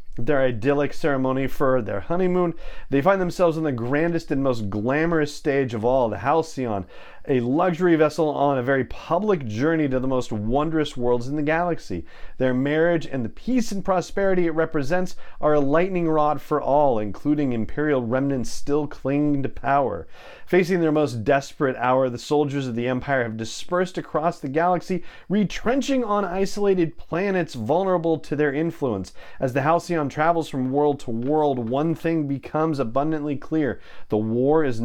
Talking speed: 165 wpm